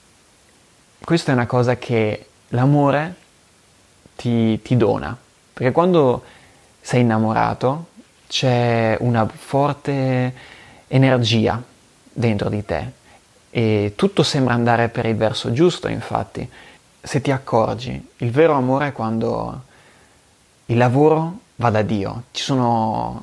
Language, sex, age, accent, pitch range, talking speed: Italian, male, 30-49, native, 115-140 Hz, 115 wpm